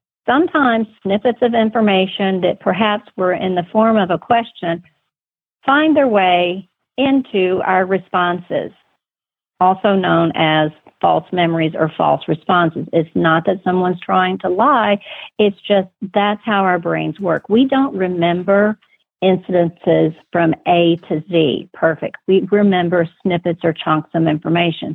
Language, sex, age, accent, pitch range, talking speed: English, female, 50-69, American, 170-215 Hz, 135 wpm